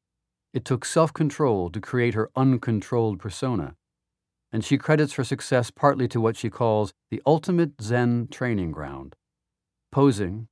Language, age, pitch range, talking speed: English, 50-69, 105-135 Hz, 135 wpm